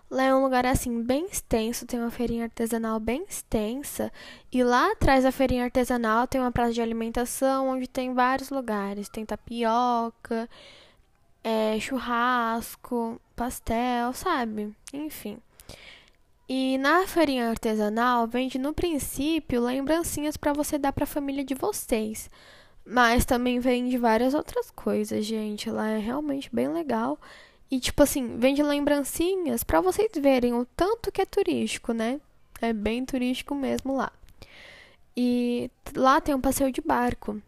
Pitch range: 230-280 Hz